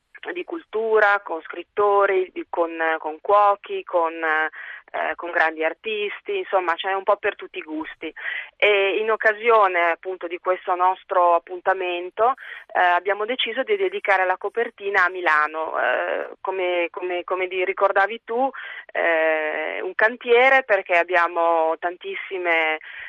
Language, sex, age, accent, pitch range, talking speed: Italian, female, 30-49, native, 165-205 Hz, 120 wpm